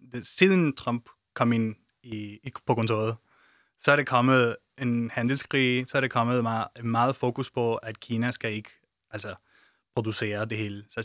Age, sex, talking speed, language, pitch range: 20-39, male, 170 wpm, Danish, 115-135 Hz